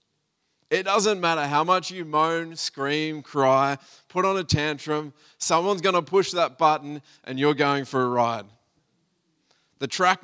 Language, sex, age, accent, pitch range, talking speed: English, male, 20-39, Australian, 145-180 Hz, 160 wpm